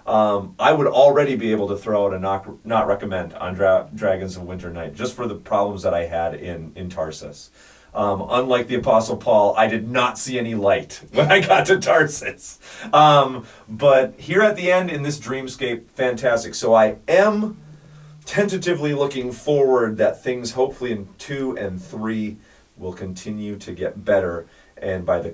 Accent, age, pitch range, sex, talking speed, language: American, 40-59, 95-130 Hz, male, 175 wpm, English